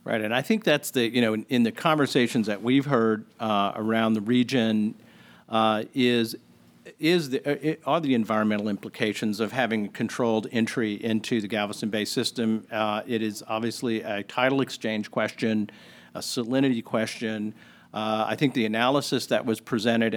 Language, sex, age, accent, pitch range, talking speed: English, male, 50-69, American, 110-130 Hz, 165 wpm